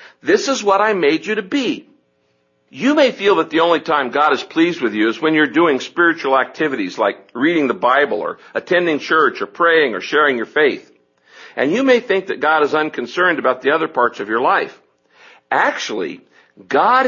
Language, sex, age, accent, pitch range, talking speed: English, male, 60-79, American, 155-235 Hz, 195 wpm